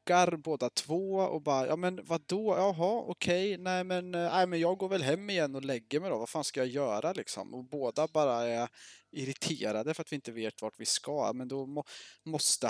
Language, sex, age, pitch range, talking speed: Swedish, male, 20-39, 115-165 Hz, 220 wpm